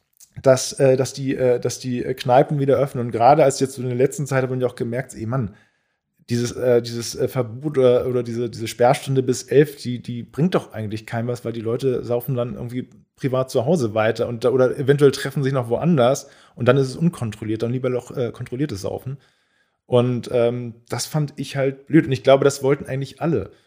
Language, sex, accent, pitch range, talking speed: German, male, German, 115-135 Hz, 205 wpm